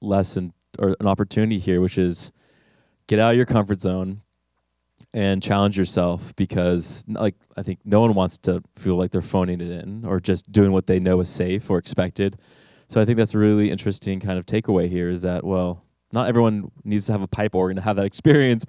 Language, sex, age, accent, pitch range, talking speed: English, male, 20-39, American, 95-115 Hz, 210 wpm